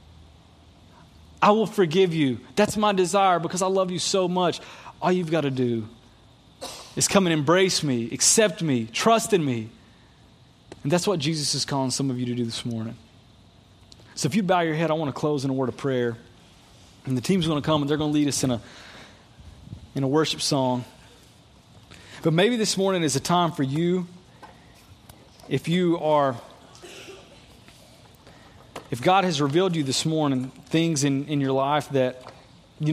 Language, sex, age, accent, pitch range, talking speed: English, male, 30-49, American, 125-170 Hz, 180 wpm